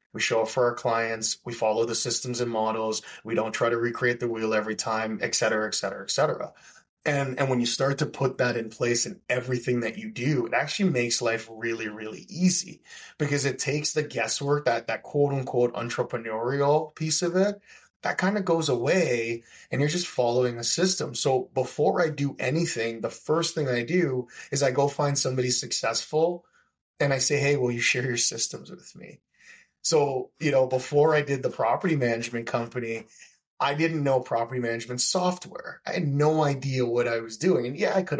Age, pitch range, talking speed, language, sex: 20-39, 115-140 Hz, 200 wpm, English, male